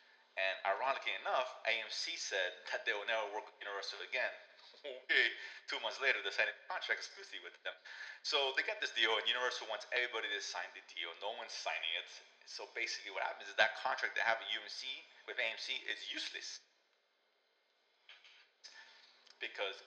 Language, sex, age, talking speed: English, male, 30-49, 170 wpm